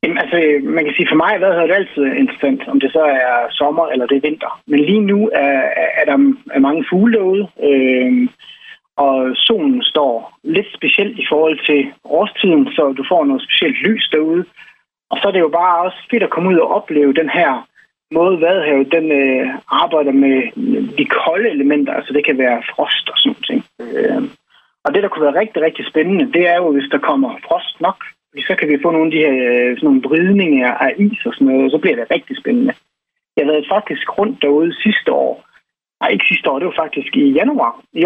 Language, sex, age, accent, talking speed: Danish, male, 30-49, native, 210 wpm